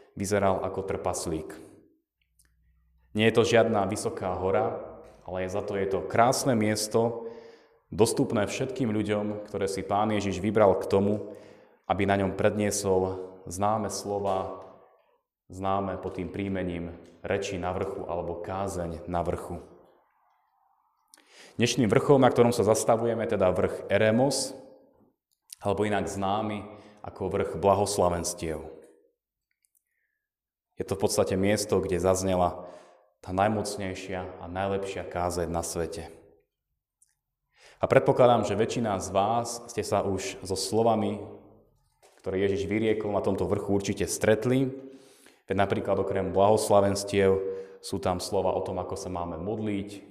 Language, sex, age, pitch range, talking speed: Slovak, male, 30-49, 90-105 Hz, 125 wpm